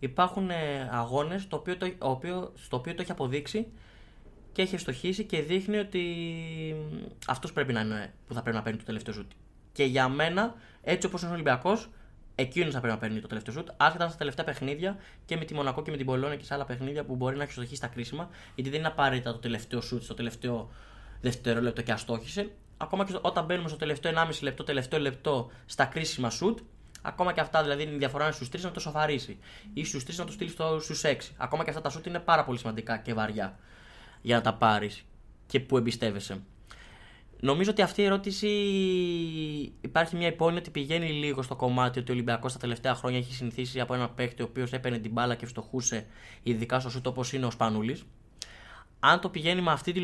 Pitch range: 120-170 Hz